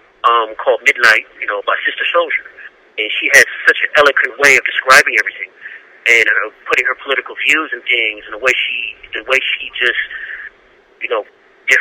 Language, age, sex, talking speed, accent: English, 30-49, male, 180 wpm, American